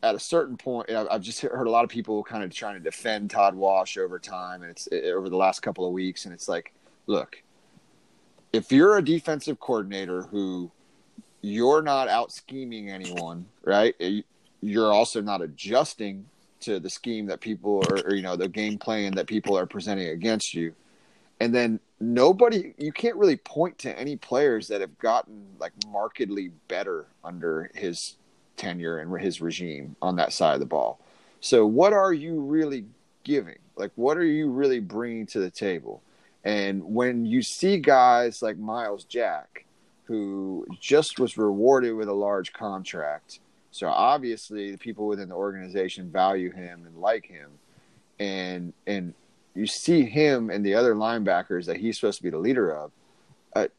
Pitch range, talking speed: 95-125 Hz, 175 wpm